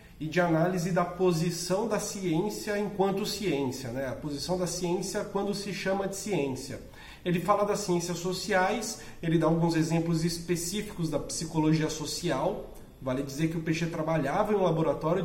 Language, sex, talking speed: Portuguese, male, 160 wpm